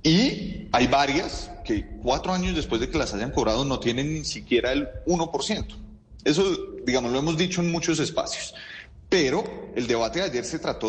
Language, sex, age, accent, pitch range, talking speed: Spanish, male, 30-49, Colombian, 125-195 Hz, 180 wpm